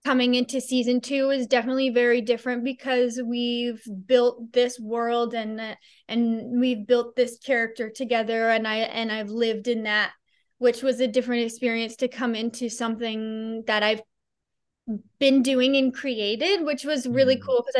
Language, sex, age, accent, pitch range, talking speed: English, female, 20-39, American, 225-260 Hz, 160 wpm